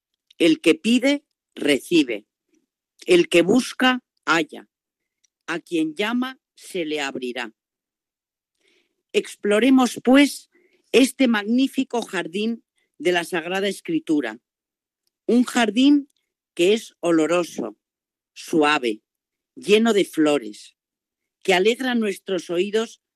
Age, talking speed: 40-59, 95 wpm